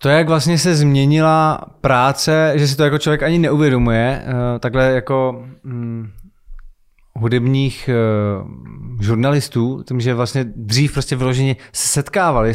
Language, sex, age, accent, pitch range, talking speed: Czech, male, 20-39, native, 115-135 Hz, 125 wpm